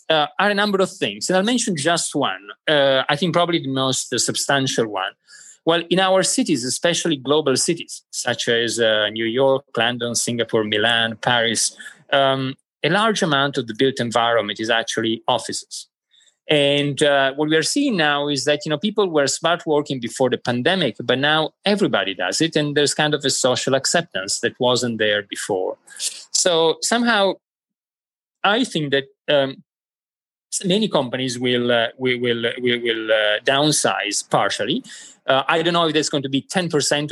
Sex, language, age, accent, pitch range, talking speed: male, English, 30-49, Italian, 125-170 Hz, 180 wpm